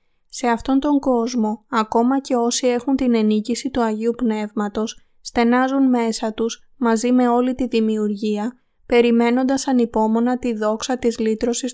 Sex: female